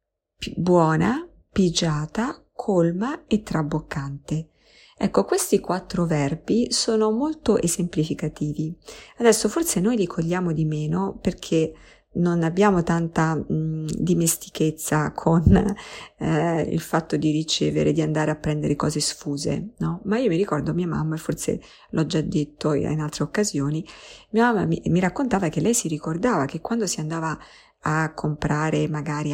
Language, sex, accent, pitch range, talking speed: Italian, female, native, 155-200 Hz, 135 wpm